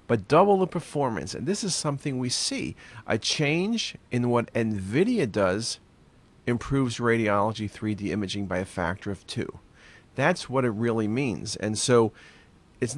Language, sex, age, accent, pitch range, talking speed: English, male, 40-59, American, 105-135 Hz, 155 wpm